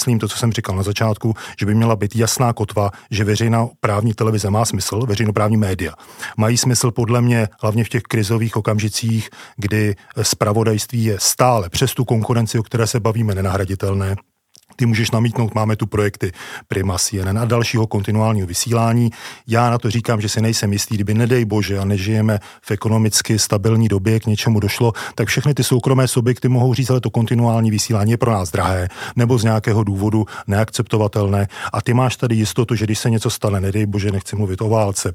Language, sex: Czech, male